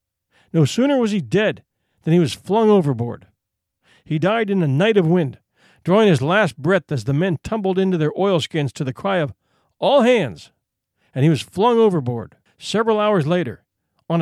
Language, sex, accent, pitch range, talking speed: English, male, American, 135-200 Hz, 180 wpm